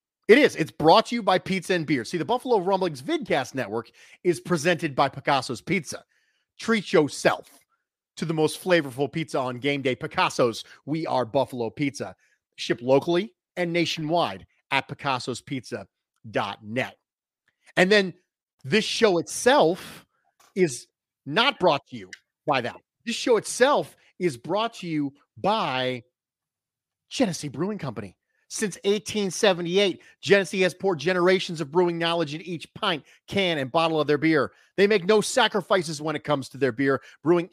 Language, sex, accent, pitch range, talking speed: English, male, American, 140-195 Hz, 150 wpm